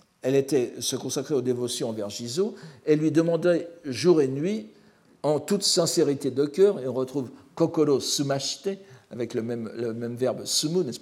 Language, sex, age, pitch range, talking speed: French, male, 60-79, 130-190 Hz, 175 wpm